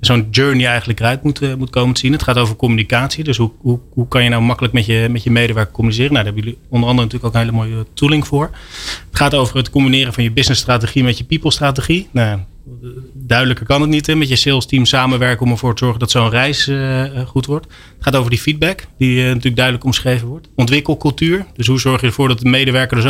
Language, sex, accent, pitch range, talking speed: Dutch, male, Dutch, 115-135 Hz, 240 wpm